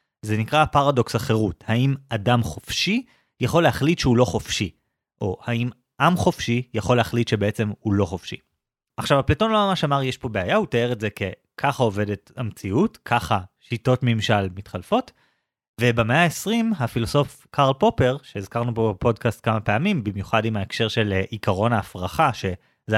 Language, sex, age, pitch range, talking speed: Hebrew, male, 30-49, 110-145 Hz, 150 wpm